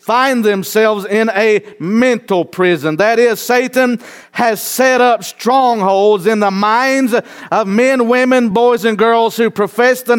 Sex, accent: male, American